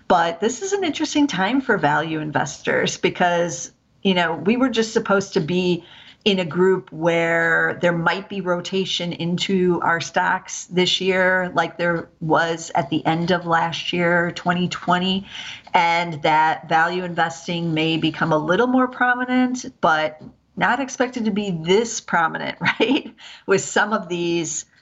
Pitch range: 165-195 Hz